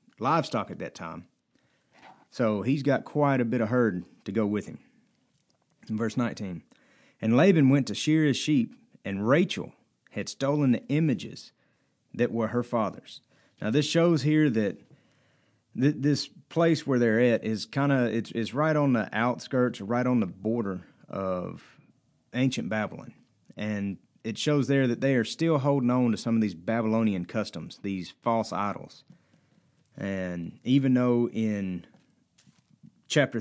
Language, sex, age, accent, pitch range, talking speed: English, male, 30-49, American, 105-135 Hz, 155 wpm